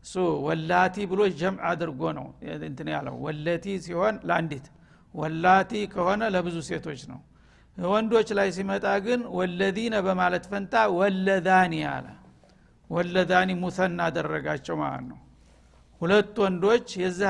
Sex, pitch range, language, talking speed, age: male, 170-200 Hz, Amharic, 110 wpm, 60-79